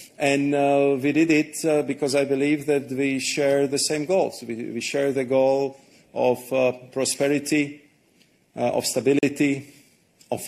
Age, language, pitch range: 50-69, English, 130-150 Hz